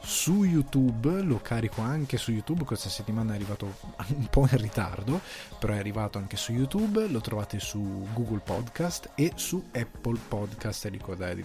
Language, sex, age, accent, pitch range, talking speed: Italian, male, 20-39, native, 100-125 Hz, 170 wpm